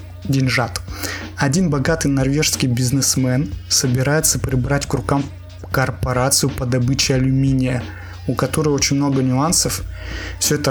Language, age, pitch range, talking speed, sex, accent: Russian, 20-39, 125-140 Hz, 110 wpm, male, native